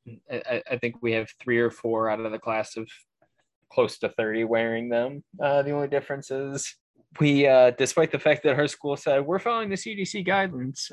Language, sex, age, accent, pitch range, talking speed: English, male, 20-39, American, 105-140 Hz, 200 wpm